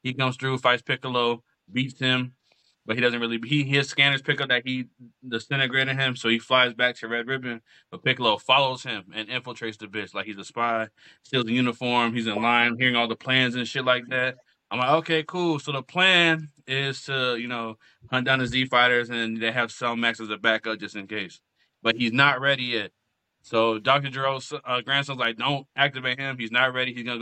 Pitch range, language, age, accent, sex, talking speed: 120-140 Hz, English, 20-39, American, male, 220 wpm